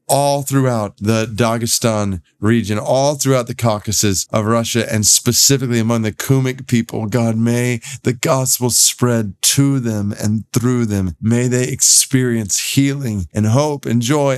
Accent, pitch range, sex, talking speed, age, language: American, 100-125 Hz, male, 145 wpm, 40-59, English